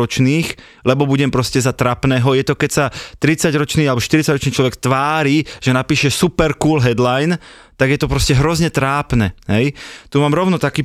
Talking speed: 165 wpm